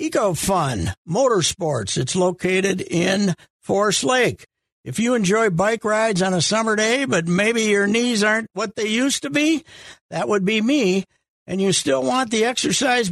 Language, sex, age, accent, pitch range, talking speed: English, male, 60-79, American, 170-230 Hz, 165 wpm